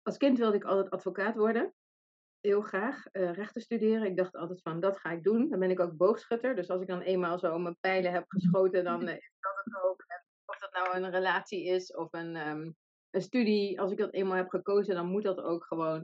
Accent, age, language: Dutch, 30-49, Dutch